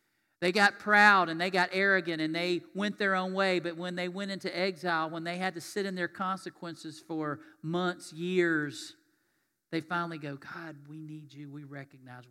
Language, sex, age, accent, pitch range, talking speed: English, male, 50-69, American, 145-180 Hz, 190 wpm